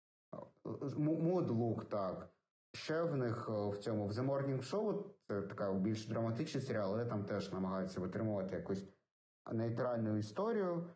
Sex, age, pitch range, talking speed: male, 30-49, 105-130 Hz, 130 wpm